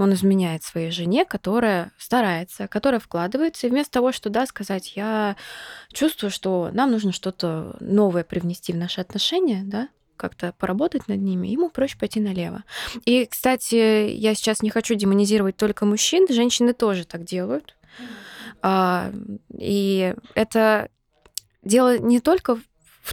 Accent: native